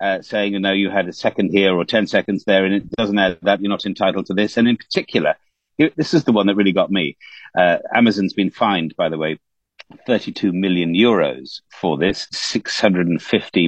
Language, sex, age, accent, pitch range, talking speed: English, male, 50-69, British, 100-155 Hz, 210 wpm